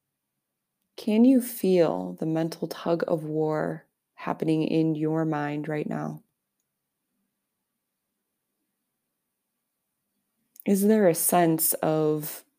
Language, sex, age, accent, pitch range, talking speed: English, female, 20-39, American, 155-175 Hz, 90 wpm